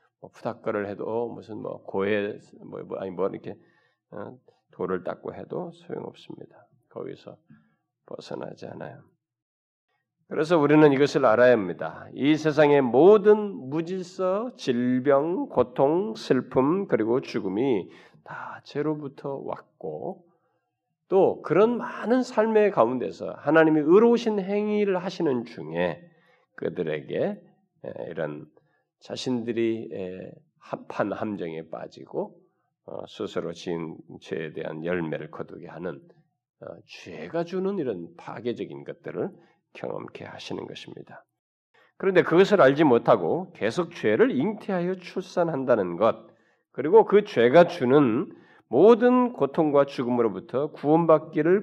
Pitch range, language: 125-185 Hz, Korean